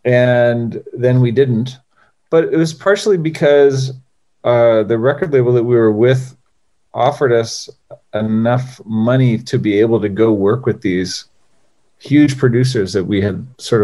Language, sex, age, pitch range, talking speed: English, male, 40-59, 110-125 Hz, 150 wpm